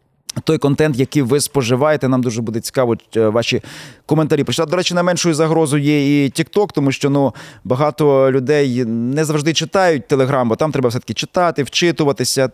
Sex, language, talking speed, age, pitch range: male, Ukrainian, 165 wpm, 20-39, 125-155 Hz